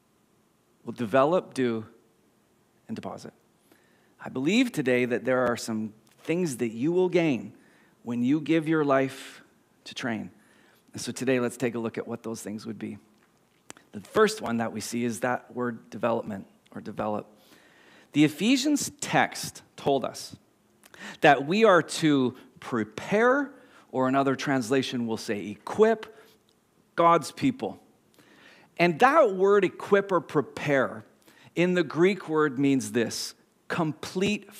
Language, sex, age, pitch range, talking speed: English, male, 40-59, 115-170 Hz, 140 wpm